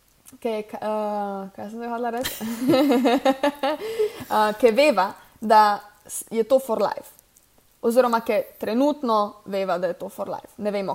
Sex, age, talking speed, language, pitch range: female, 20-39, 120 wpm, English, 205-245 Hz